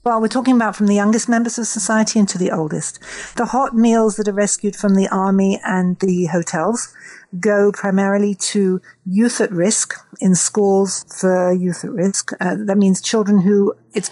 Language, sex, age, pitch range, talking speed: English, female, 60-79, 180-210 Hz, 185 wpm